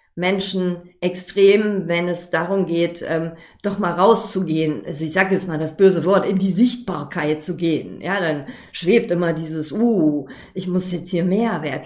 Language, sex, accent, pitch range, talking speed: German, female, German, 175-215 Hz, 170 wpm